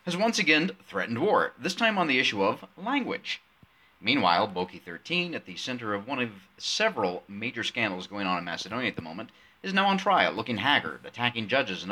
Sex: male